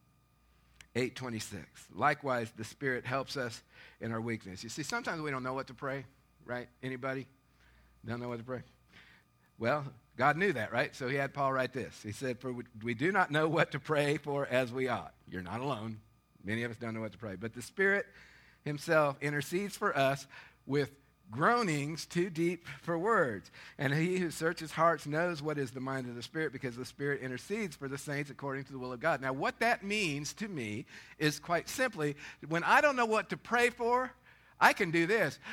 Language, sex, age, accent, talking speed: English, male, 50-69, American, 205 wpm